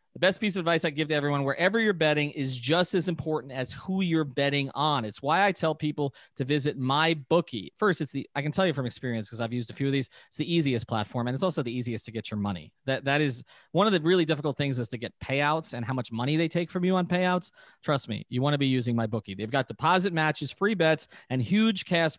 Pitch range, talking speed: 130-165 Hz, 270 wpm